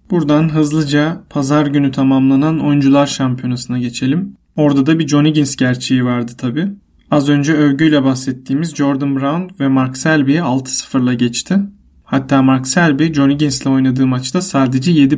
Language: Turkish